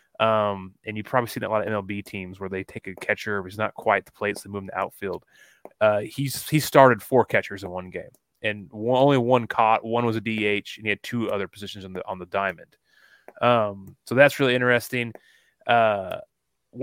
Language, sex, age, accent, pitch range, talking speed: English, male, 20-39, American, 105-130 Hz, 220 wpm